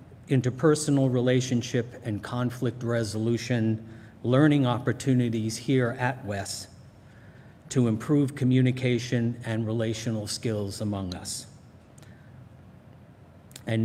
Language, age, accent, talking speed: English, 50-69, American, 80 wpm